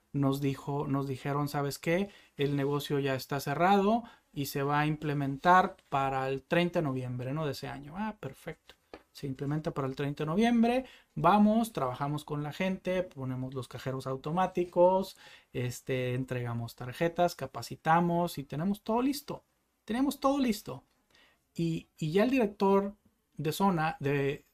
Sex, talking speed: male, 150 wpm